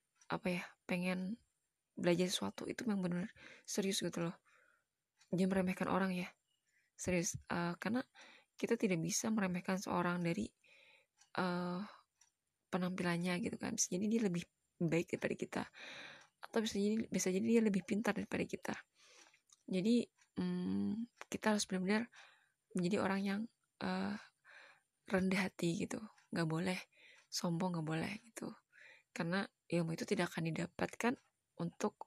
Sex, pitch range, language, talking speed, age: female, 175-215 Hz, Indonesian, 130 wpm, 20-39